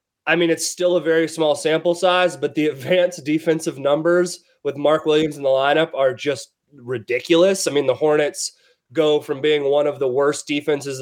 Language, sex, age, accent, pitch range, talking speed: English, male, 30-49, American, 140-165 Hz, 190 wpm